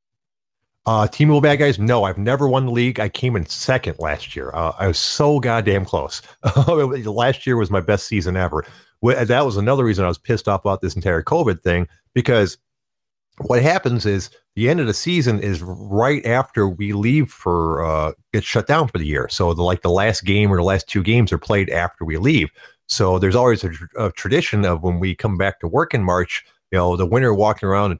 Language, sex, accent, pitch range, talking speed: English, male, American, 90-130 Hz, 225 wpm